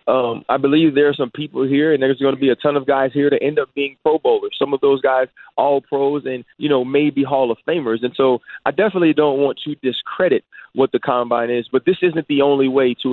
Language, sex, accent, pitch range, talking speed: English, male, American, 125-145 Hz, 255 wpm